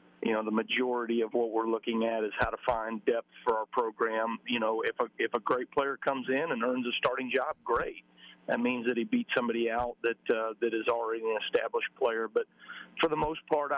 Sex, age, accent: male, 40-59, American